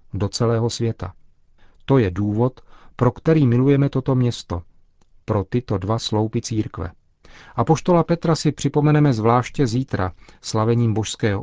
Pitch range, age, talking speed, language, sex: 105-125 Hz, 40-59, 125 wpm, Czech, male